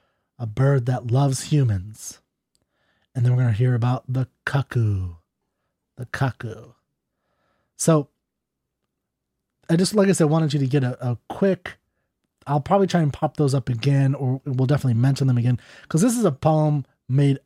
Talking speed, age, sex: 170 wpm, 30-49, male